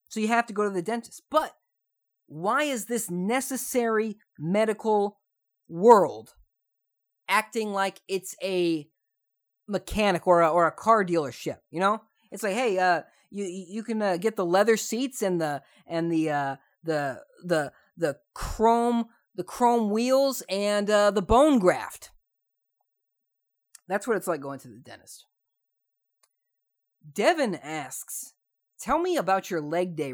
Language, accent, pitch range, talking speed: English, American, 150-220 Hz, 145 wpm